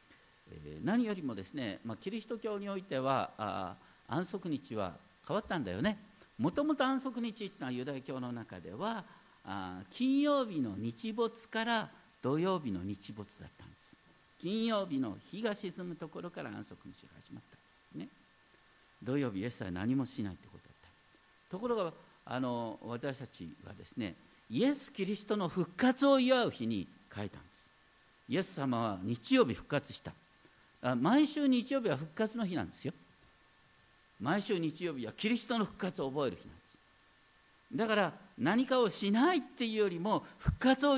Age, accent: 50-69, native